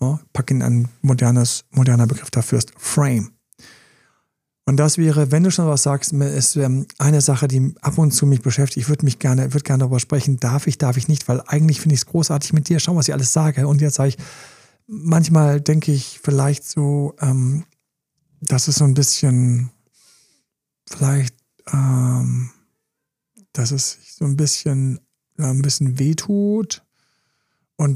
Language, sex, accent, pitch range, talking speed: German, male, German, 130-155 Hz, 165 wpm